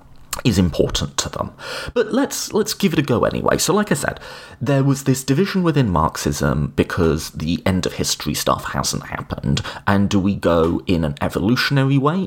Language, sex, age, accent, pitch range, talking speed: English, male, 30-49, British, 90-145 Hz, 185 wpm